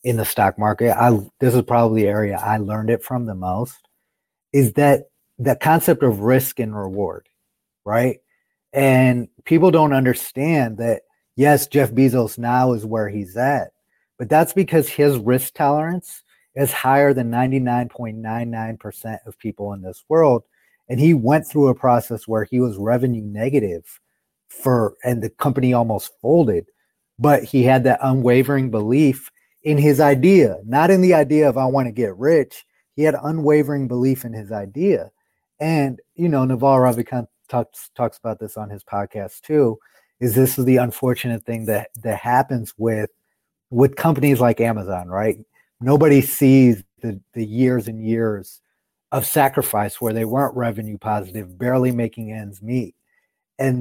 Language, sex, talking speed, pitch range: English, male, 160 wpm, 110-140 Hz